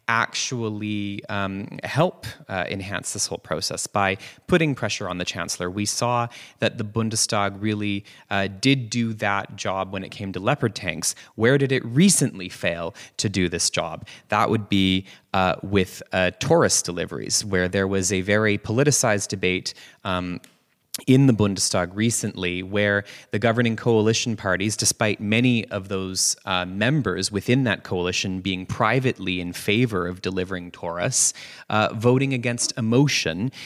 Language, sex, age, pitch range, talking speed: English, male, 20-39, 95-115 Hz, 150 wpm